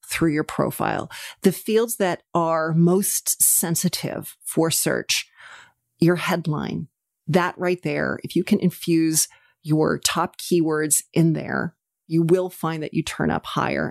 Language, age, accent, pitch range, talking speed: English, 40-59, American, 165-205 Hz, 140 wpm